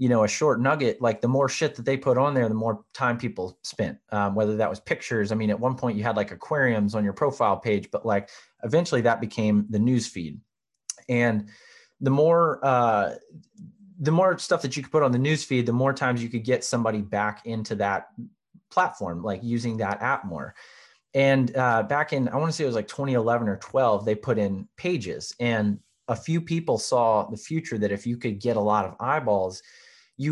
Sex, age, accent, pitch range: male, 30-49, American, 105-130 Hz